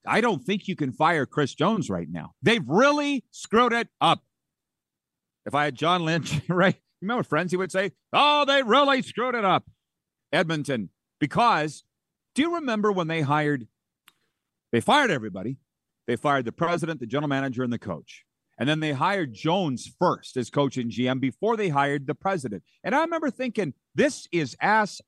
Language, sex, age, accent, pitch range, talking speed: English, male, 40-59, American, 130-220 Hz, 180 wpm